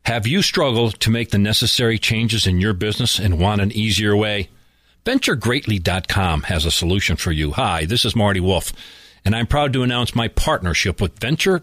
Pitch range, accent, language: 100-150 Hz, American, English